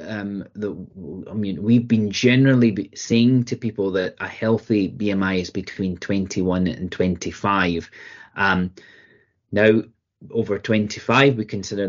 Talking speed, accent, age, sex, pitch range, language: 120 wpm, British, 30-49, male, 100-120 Hz, English